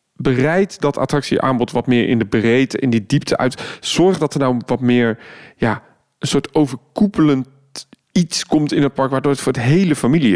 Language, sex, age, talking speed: Dutch, male, 40-59, 190 wpm